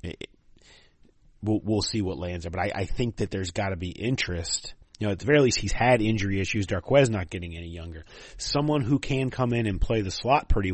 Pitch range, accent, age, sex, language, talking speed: 90-130 Hz, American, 30-49, male, English, 230 wpm